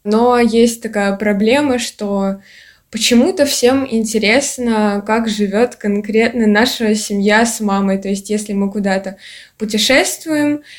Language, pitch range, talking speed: Russian, 200-230 Hz, 115 wpm